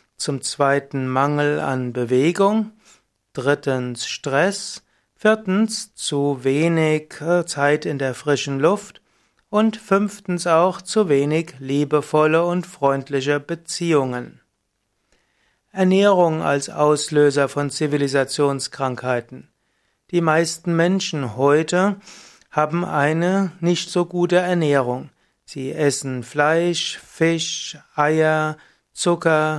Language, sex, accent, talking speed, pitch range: German, male, German, 90 wpm, 140-175 Hz